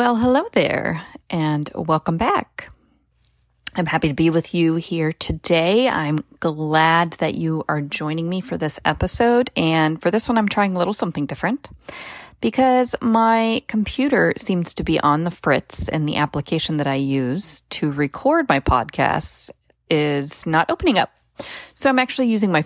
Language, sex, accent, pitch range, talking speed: English, female, American, 150-210 Hz, 165 wpm